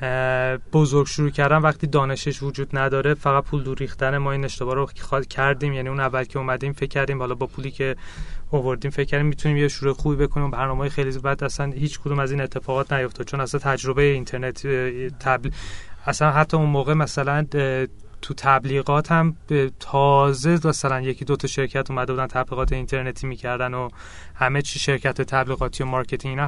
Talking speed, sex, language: 170 wpm, male, Persian